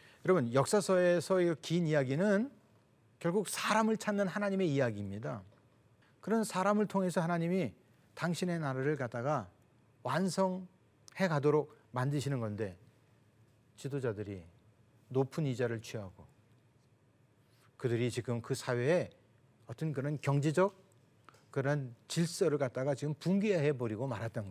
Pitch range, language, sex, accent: 115-160 Hz, Korean, male, native